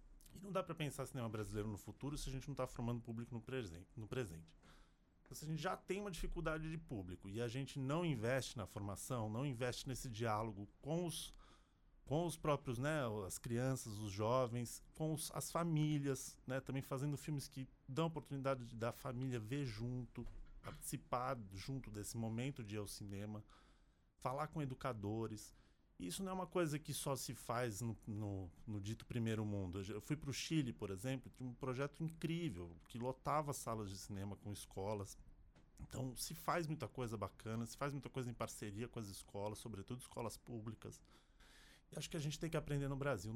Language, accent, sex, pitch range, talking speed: Portuguese, Brazilian, male, 110-145 Hz, 190 wpm